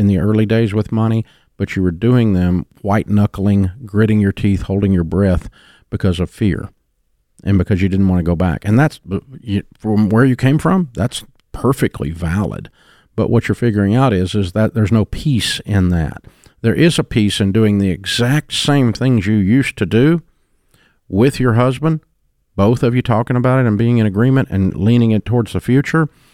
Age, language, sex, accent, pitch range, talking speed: 50-69, English, male, American, 95-120 Hz, 195 wpm